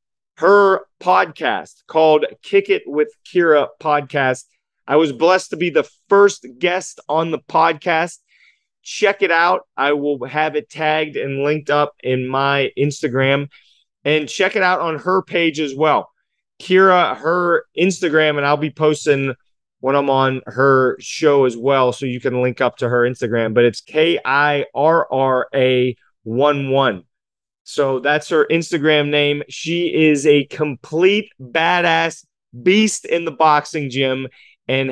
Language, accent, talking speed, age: English, American, 145 wpm, 30-49